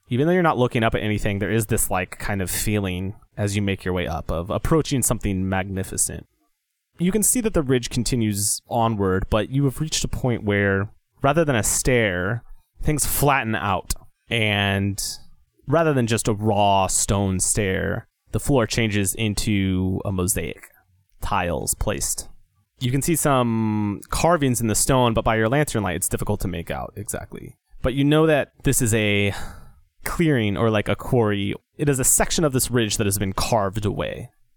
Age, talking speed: 30-49, 185 wpm